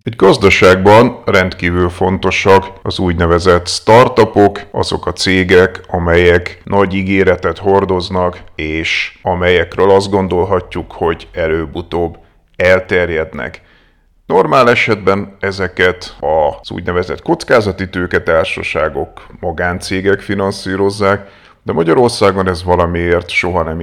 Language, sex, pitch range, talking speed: Hungarian, male, 85-100 Hz, 90 wpm